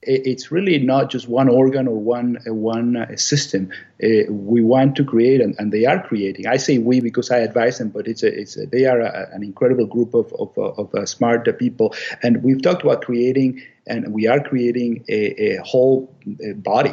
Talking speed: 215 wpm